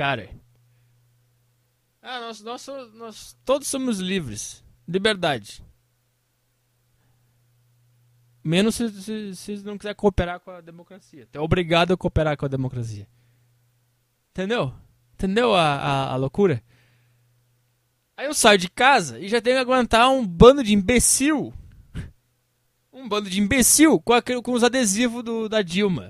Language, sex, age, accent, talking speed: English, male, 20-39, Brazilian, 135 wpm